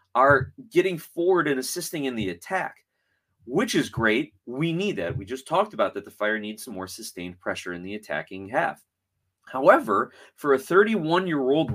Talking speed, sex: 175 wpm, male